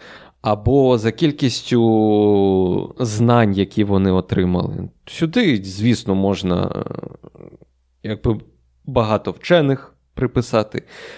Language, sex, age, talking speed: Ukrainian, male, 20-39, 75 wpm